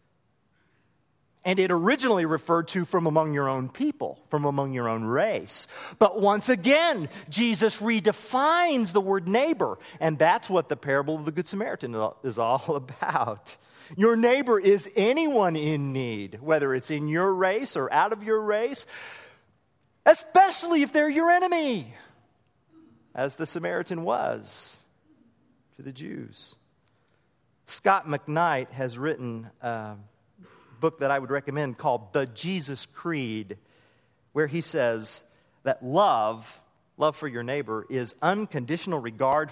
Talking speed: 135 wpm